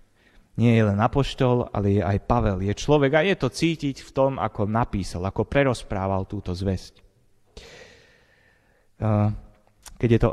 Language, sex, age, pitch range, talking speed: Slovak, male, 30-49, 100-125 Hz, 145 wpm